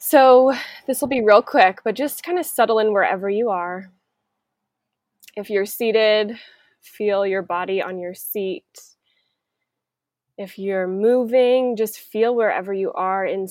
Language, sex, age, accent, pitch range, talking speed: English, female, 20-39, American, 195-250 Hz, 145 wpm